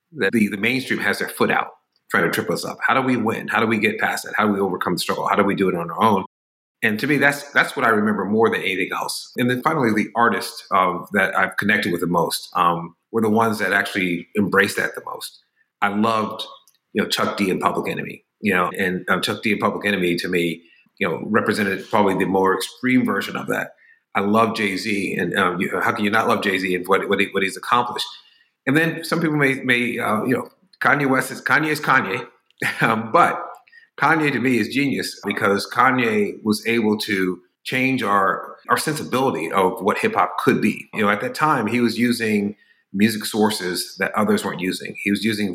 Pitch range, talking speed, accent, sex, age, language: 100-125 Hz, 230 wpm, American, male, 40-59, English